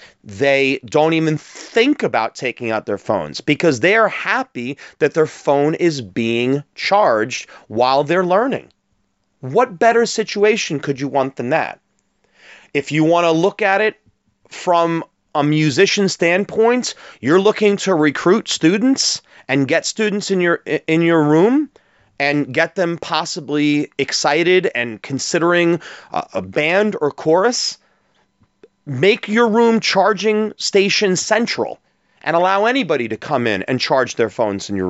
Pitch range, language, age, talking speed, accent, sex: 150-210 Hz, English, 30-49, 145 wpm, American, male